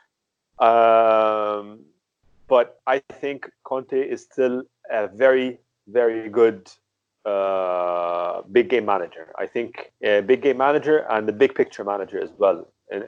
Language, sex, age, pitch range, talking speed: English, male, 30-49, 110-145 Hz, 135 wpm